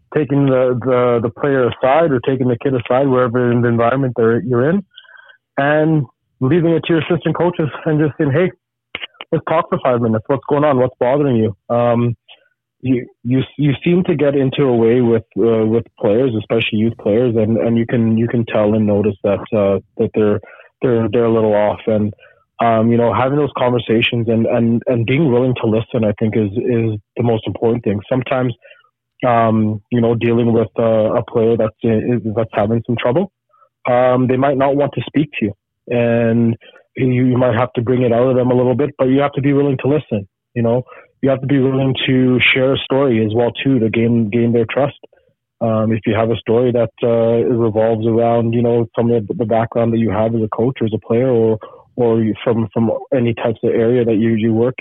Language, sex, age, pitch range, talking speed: English, male, 30-49, 115-135 Hz, 220 wpm